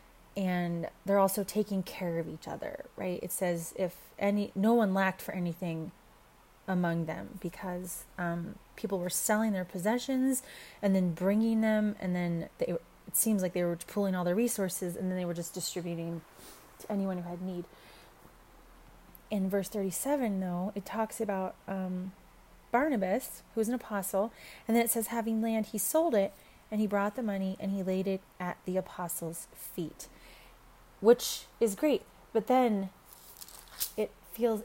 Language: English